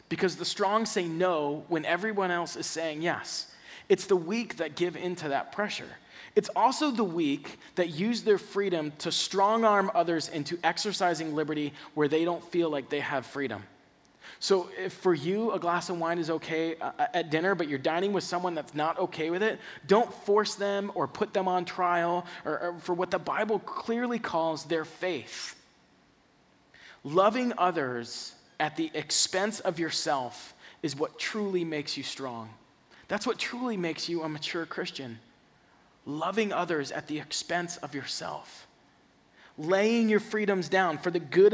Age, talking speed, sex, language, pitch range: 20-39, 170 wpm, male, English, 150-190 Hz